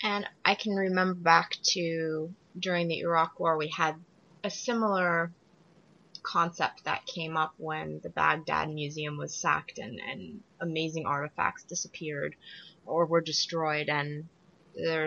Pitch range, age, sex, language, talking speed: 160-195 Hz, 20-39, female, English, 135 wpm